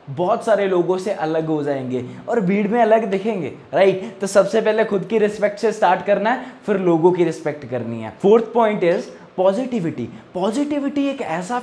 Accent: native